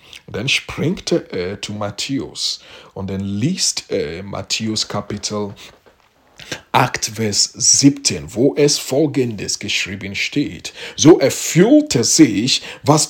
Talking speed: 110 wpm